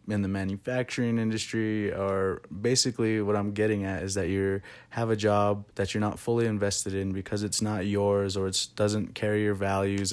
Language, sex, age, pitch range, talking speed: English, male, 20-39, 95-105 Hz, 190 wpm